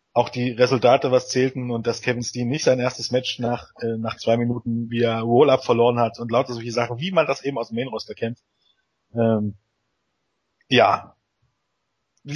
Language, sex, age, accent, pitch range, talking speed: German, male, 30-49, German, 120-145 Hz, 180 wpm